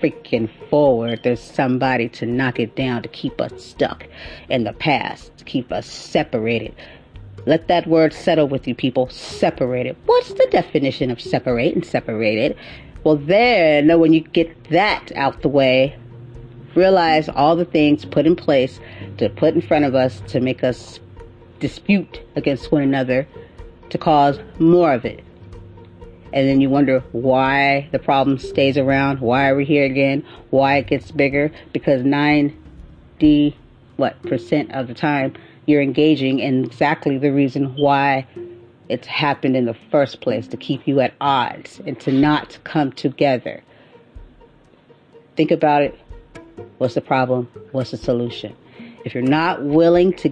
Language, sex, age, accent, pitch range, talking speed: English, female, 40-59, American, 120-155 Hz, 155 wpm